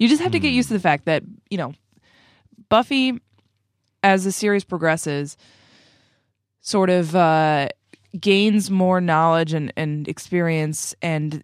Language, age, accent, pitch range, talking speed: English, 20-39, American, 130-170 Hz, 140 wpm